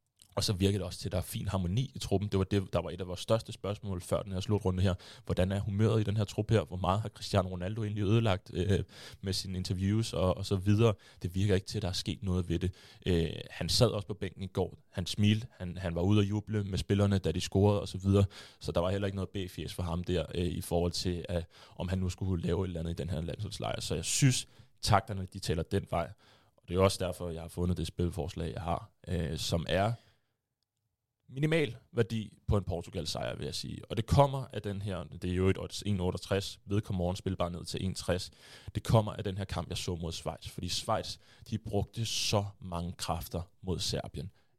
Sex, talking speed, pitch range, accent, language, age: male, 240 wpm, 90-105 Hz, native, Danish, 20-39